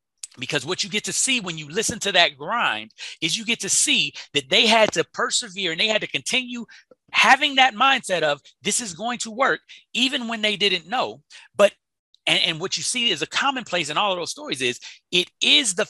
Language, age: English, 30-49